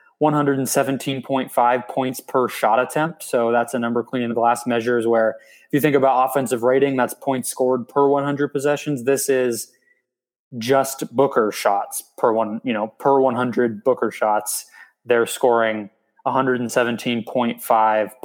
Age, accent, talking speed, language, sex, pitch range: 20-39, American, 140 wpm, English, male, 115-130 Hz